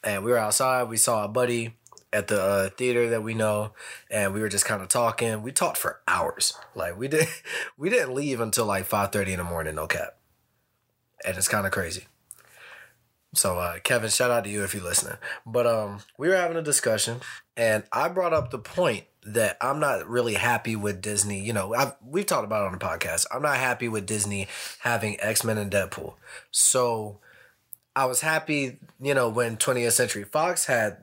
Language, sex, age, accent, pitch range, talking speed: English, male, 20-39, American, 105-135 Hz, 200 wpm